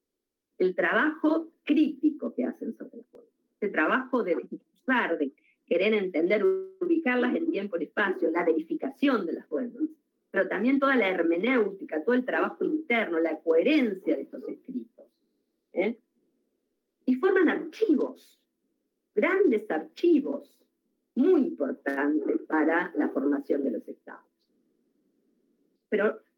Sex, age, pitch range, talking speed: female, 40-59, 245-345 Hz, 125 wpm